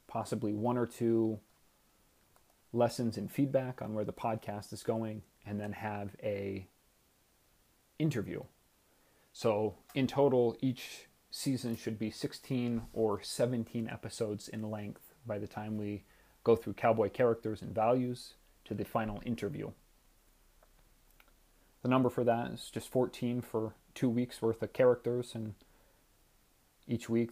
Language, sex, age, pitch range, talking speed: English, male, 30-49, 105-120 Hz, 135 wpm